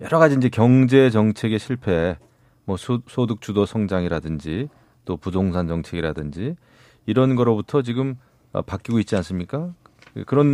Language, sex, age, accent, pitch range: Korean, male, 30-49, native, 95-130 Hz